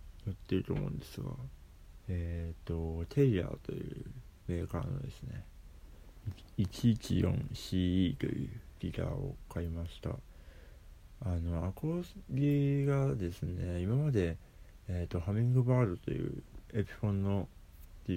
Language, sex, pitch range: Japanese, male, 85-120 Hz